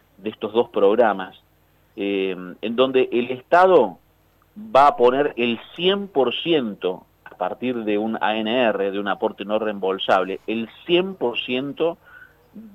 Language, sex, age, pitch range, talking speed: Spanish, male, 40-59, 100-130 Hz, 120 wpm